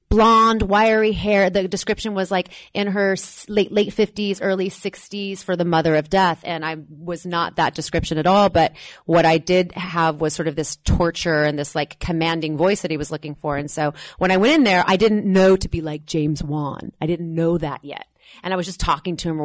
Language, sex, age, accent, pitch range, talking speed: English, female, 30-49, American, 155-190 Hz, 230 wpm